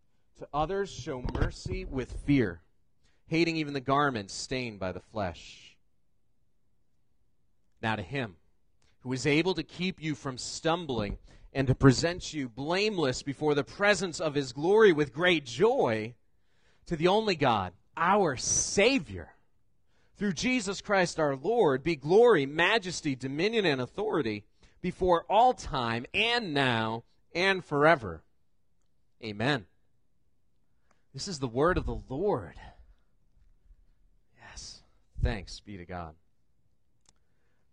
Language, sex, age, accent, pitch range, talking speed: English, male, 30-49, American, 120-190 Hz, 120 wpm